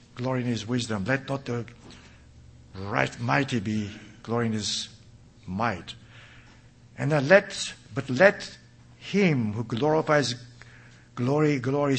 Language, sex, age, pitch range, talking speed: English, male, 60-79, 110-135 Hz, 115 wpm